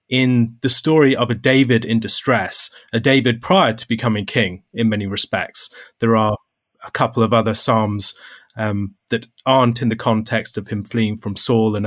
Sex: male